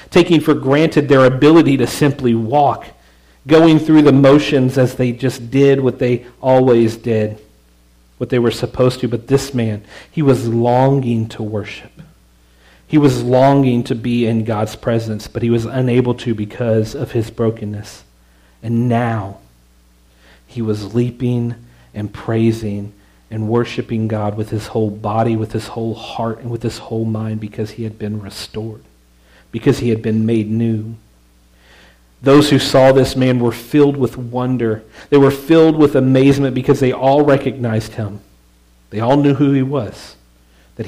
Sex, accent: male, American